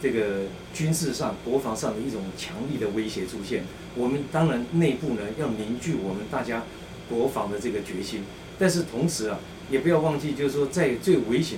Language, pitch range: Chinese, 120-165 Hz